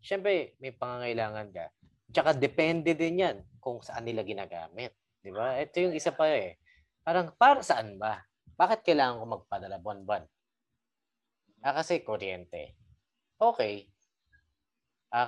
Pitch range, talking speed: 105-165 Hz, 135 wpm